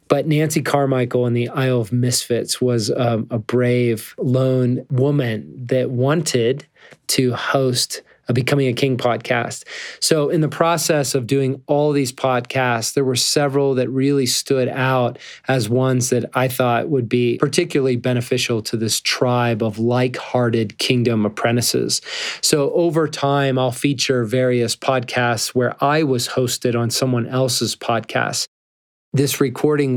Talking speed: 145 wpm